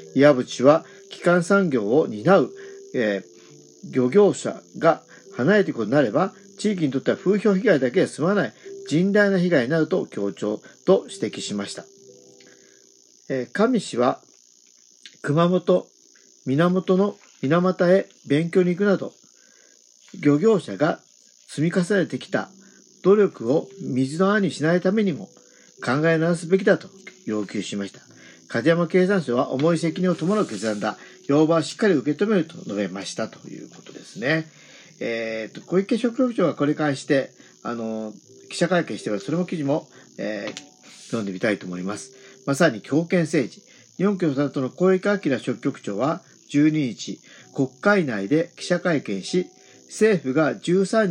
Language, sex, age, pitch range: Japanese, male, 50-69, 125-190 Hz